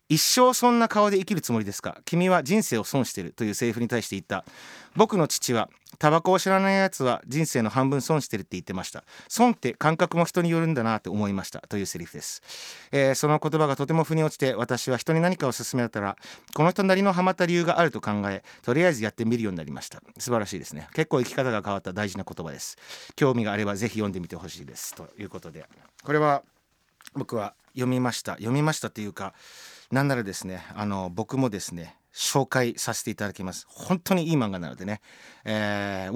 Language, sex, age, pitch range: Japanese, male, 30-49, 105-160 Hz